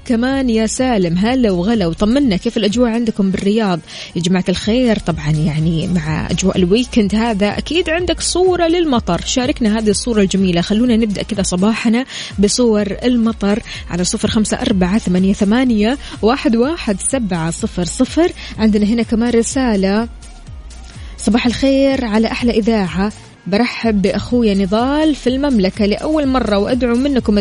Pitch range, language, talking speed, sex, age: 195-245 Hz, Arabic, 115 wpm, female, 20-39